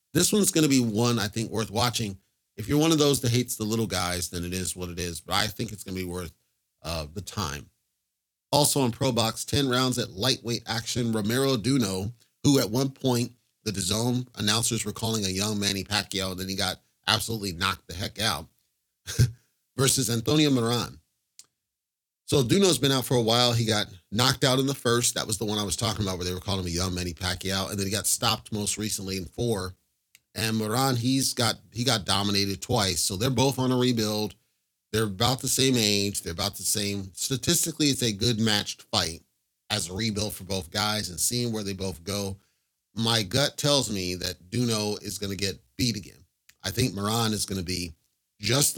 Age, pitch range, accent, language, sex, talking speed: 30-49, 95-125 Hz, American, English, male, 215 wpm